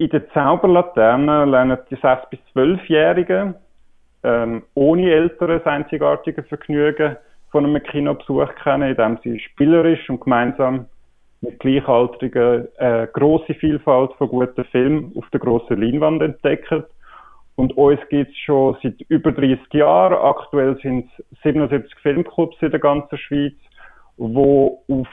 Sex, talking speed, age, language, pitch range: male, 130 wpm, 30-49, German, 125-155 Hz